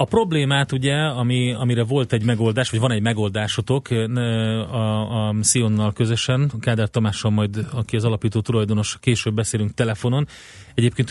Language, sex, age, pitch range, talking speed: Hungarian, male, 30-49, 105-125 Hz, 145 wpm